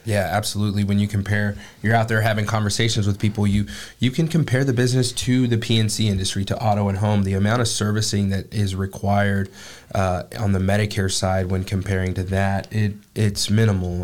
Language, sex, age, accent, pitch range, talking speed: English, male, 20-39, American, 100-110 Hz, 190 wpm